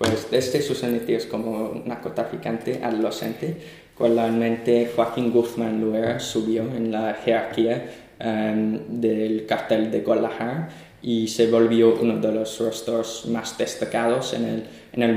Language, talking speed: Spanish, 125 wpm